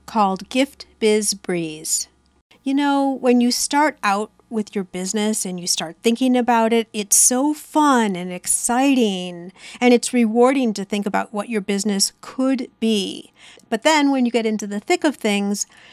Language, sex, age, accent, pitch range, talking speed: English, female, 50-69, American, 200-260 Hz, 170 wpm